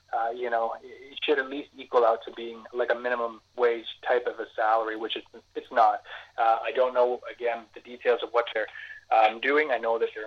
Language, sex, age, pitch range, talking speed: English, male, 30-49, 115-145 Hz, 230 wpm